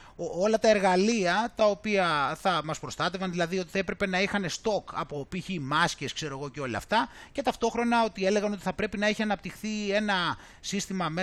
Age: 30-49